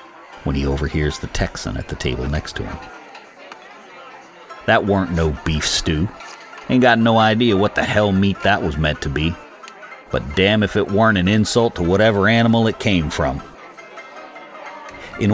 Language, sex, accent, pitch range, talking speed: English, male, American, 75-100 Hz, 170 wpm